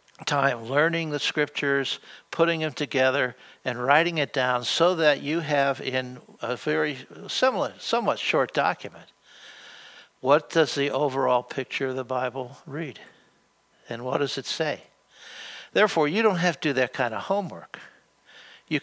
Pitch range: 125-155 Hz